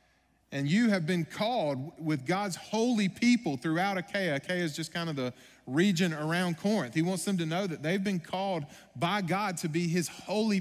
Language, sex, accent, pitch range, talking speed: English, male, American, 150-200 Hz, 200 wpm